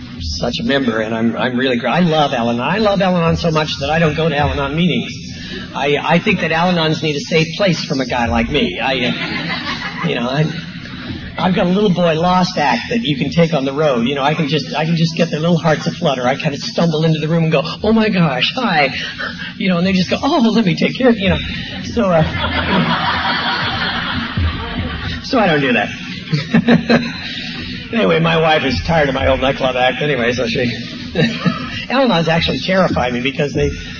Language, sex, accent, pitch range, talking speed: English, male, American, 140-190 Hz, 215 wpm